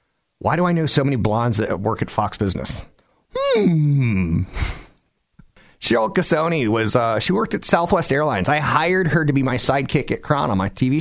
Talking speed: 180 wpm